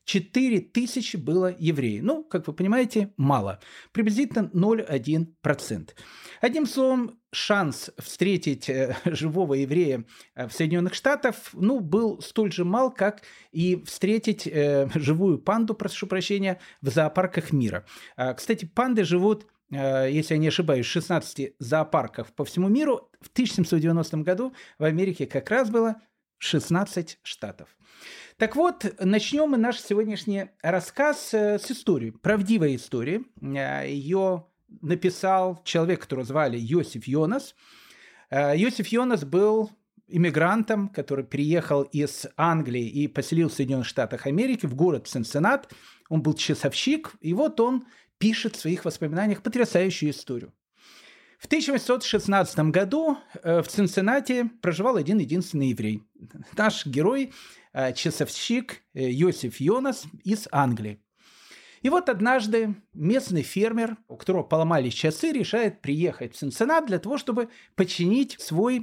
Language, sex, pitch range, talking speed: Russian, male, 155-225 Hz, 120 wpm